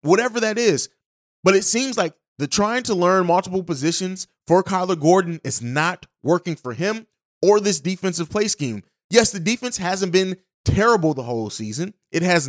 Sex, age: male, 30-49